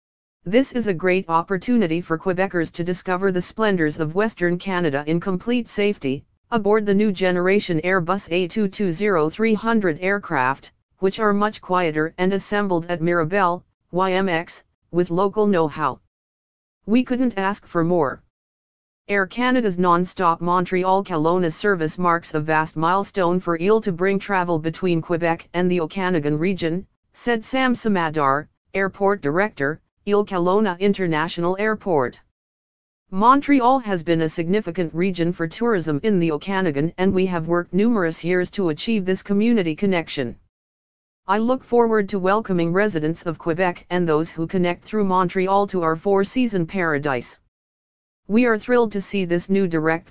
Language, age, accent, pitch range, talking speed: English, 50-69, American, 165-200 Hz, 140 wpm